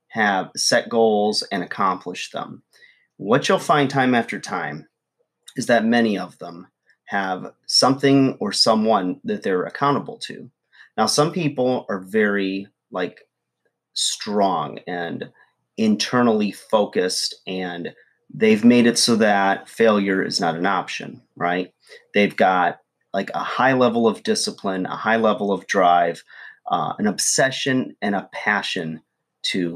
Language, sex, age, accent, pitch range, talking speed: English, male, 30-49, American, 95-125 Hz, 135 wpm